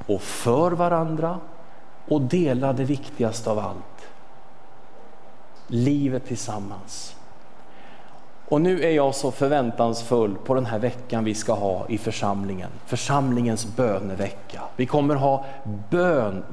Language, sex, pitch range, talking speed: Swedish, male, 110-150 Hz, 115 wpm